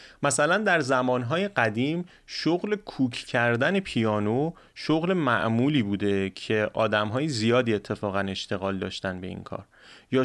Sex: male